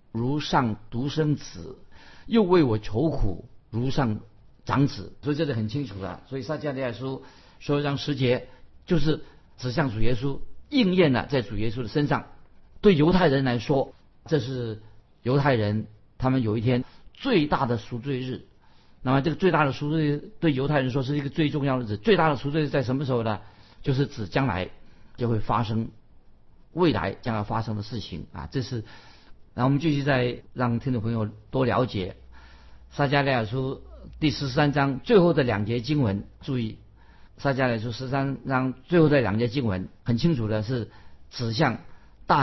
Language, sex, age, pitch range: Chinese, male, 50-69, 110-145 Hz